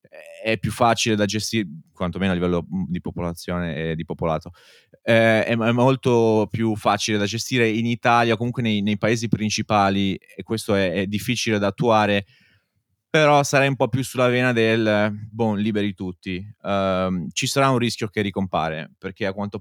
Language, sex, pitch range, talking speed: Italian, male, 100-120 Hz, 170 wpm